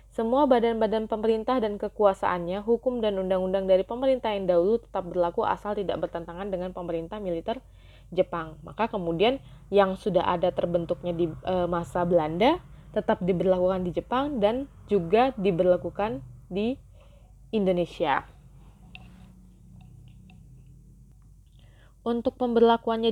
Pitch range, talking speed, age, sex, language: 175-220 Hz, 105 wpm, 20-39, female, Indonesian